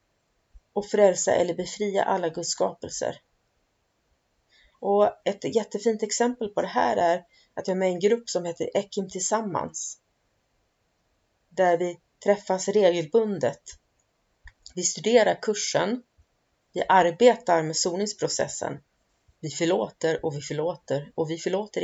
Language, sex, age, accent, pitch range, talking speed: Swedish, female, 30-49, native, 175-205 Hz, 120 wpm